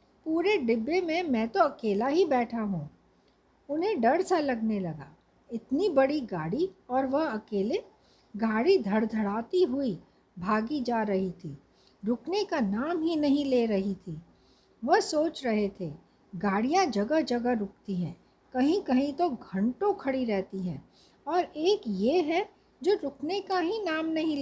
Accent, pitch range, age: native, 220-335 Hz, 60-79